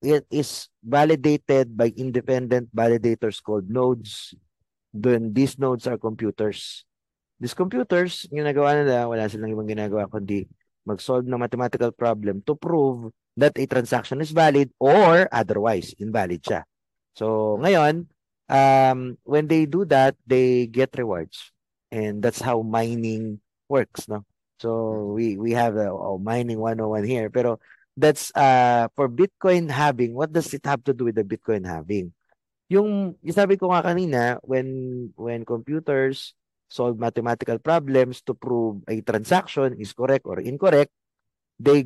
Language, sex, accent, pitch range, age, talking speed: Filipino, male, native, 110-140 Hz, 20-39, 145 wpm